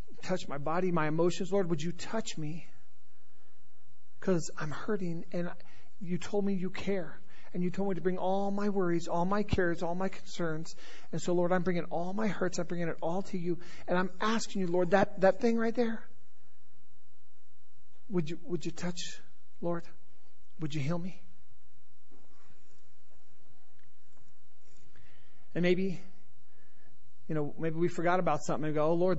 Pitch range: 160-215 Hz